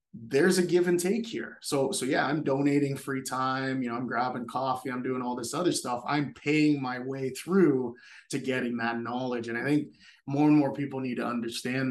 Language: English